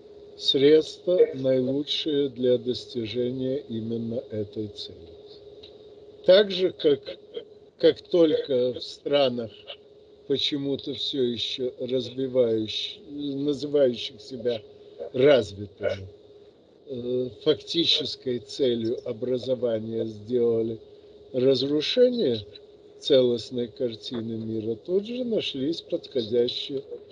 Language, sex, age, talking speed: Russian, male, 50-69, 75 wpm